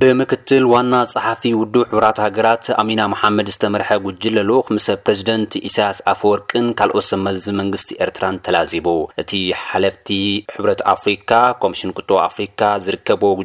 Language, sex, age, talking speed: Amharic, male, 30-49, 130 wpm